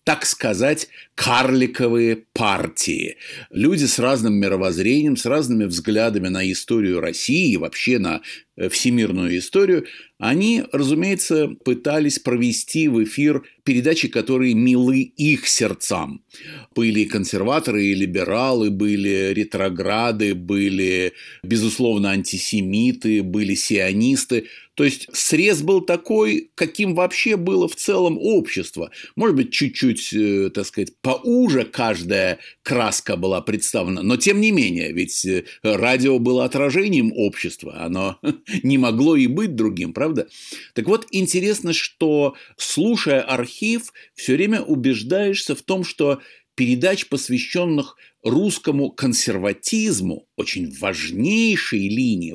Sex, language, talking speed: male, Russian, 110 wpm